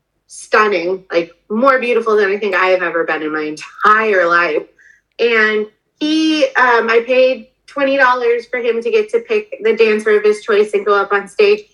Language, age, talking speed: English, 30-49, 190 wpm